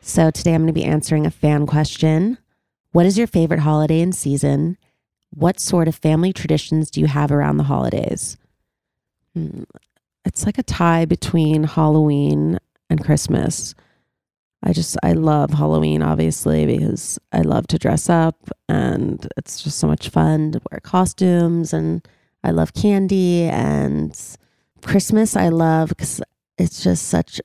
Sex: female